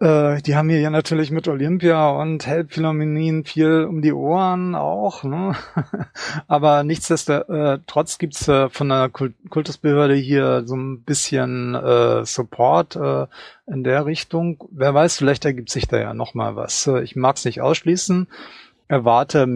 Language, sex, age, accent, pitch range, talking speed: German, male, 30-49, German, 125-160 Hz, 140 wpm